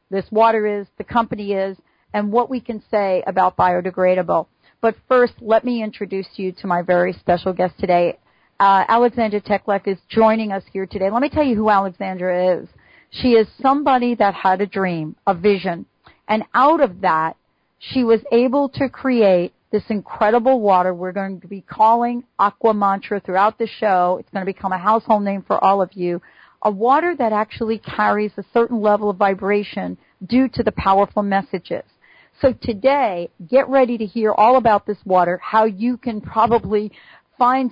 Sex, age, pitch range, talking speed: female, 40-59, 190-230 Hz, 180 wpm